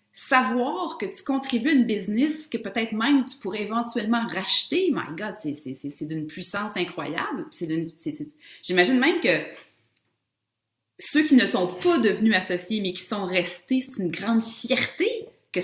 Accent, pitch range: Canadian, 175-260 Hz